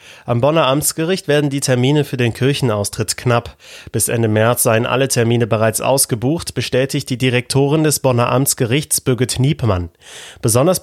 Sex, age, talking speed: male, 30-49, 150 wpm